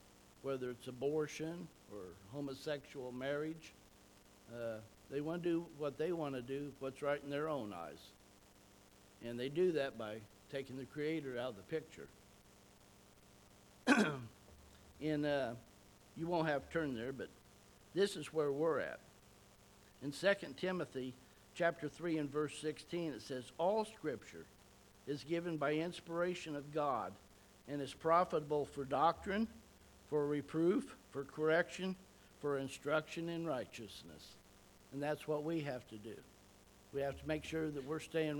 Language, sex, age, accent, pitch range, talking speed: English, male, 60-79, American, 100-160 Hz, 145 wpm